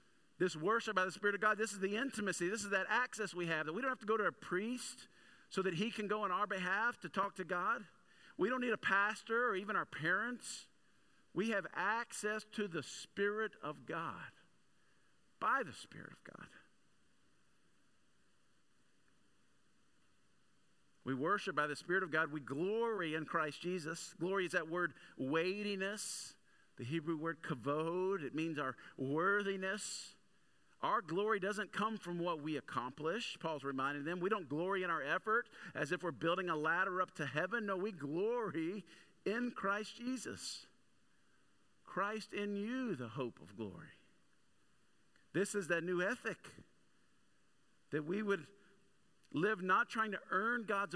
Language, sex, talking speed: English, male, 160 wpm